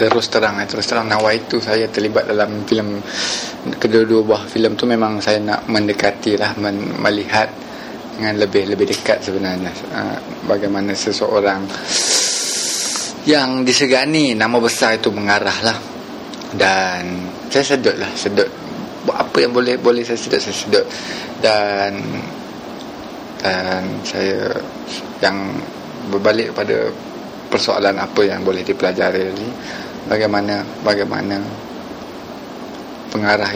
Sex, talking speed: male, 115 wpm